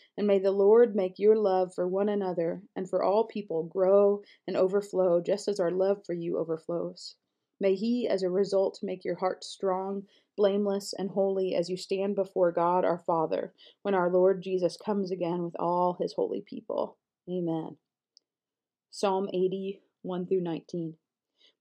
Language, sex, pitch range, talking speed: English, female, 185-215 Hz, 160 wpm